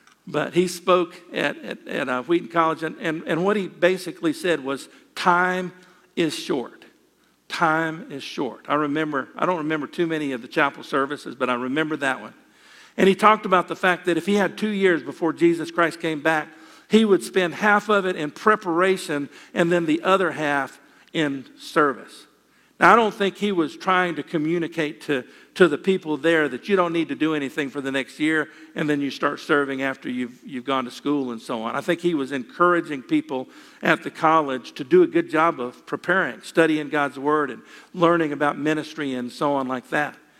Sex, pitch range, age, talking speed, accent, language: male, 150-185 Hz, 50-69, 200 wpm, American, English